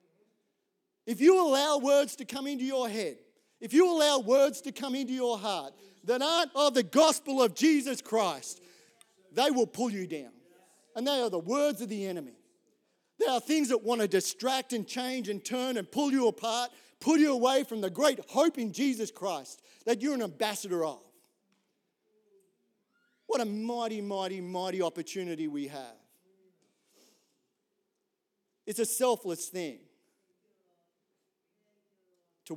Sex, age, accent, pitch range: male, 40-59, Australian, 170-250 Hz